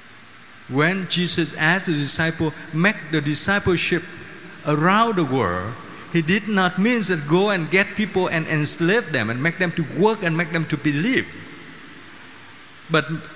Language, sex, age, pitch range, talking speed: Vietnamese, male, 50-69, 140-195 Hz, 155 wpm